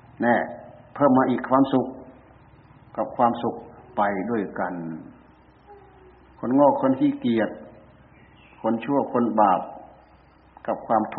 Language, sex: Thai, male